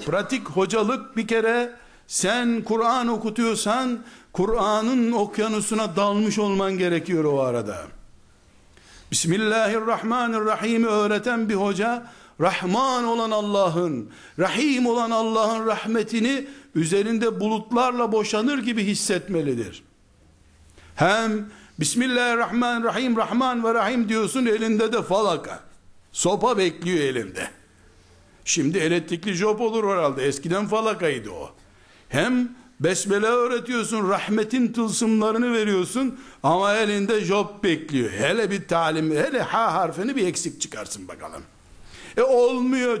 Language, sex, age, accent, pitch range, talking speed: Turkish, male, 60-79, native, 180-235 Hz, 100 wpm